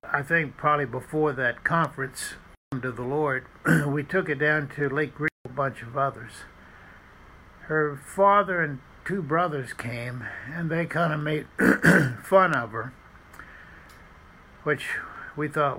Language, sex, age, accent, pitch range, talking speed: English, male, 60-79, American, 125-150 Hz, 140 wpm